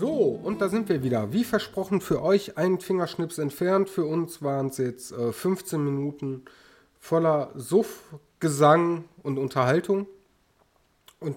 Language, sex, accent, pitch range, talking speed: German, male, German, 125-165 Hz, 145 wpm